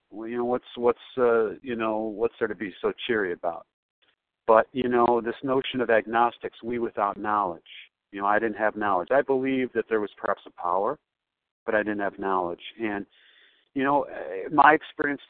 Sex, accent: male, American